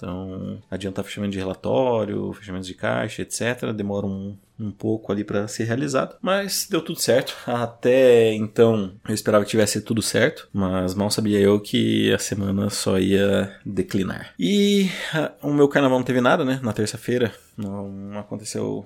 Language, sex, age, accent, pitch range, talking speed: Portuguese, male, 20-39, Brazilian, 100-125 Hz, 160 wpm